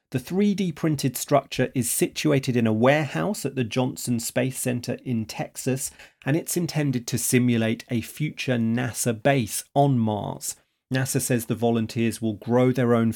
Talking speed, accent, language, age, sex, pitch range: 160 wpm, British, English, 30-49, male, 115-140 Hz